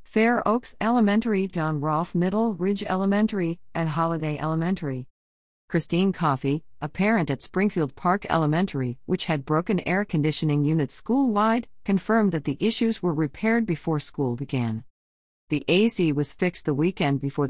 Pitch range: 145-195 Hz